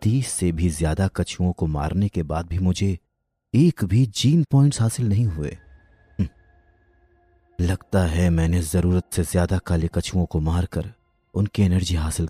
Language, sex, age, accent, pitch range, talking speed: Hindi, male, 30-49, native, 85-110 Hz, 145 wpm